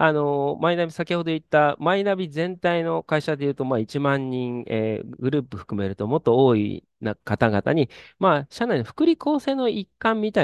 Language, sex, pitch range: Japanese, male, 115-185 Hz